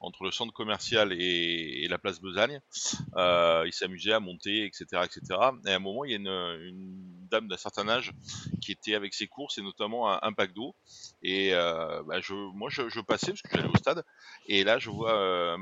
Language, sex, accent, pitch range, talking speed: French, male, French, 95-125 Hz, 215 wpm